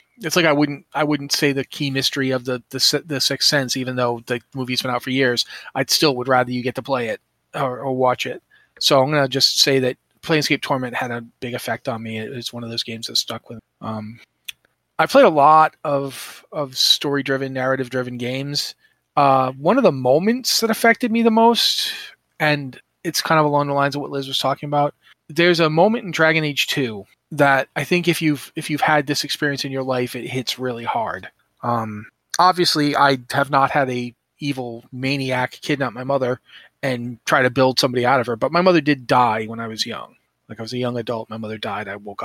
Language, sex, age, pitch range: English, male, 30-49, 125-150 Hz